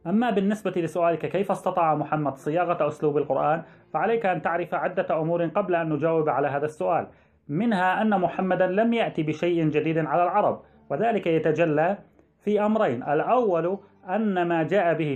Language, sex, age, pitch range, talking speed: Arabic, male, 30-49, 155-190 Hz, 150 wpm